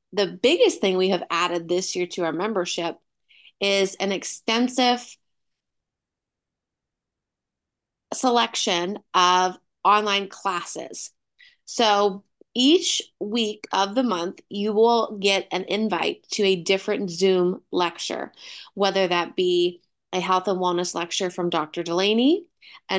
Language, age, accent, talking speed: English, 20-39, American, 120 wpm